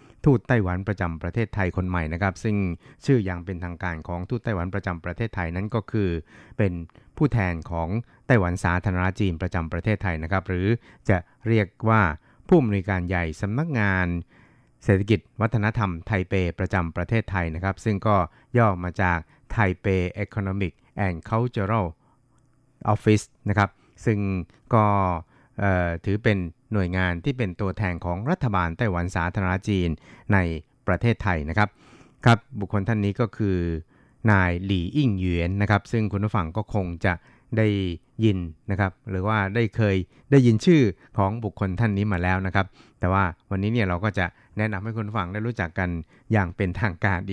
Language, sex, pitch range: Thai, male, 90-110 Hz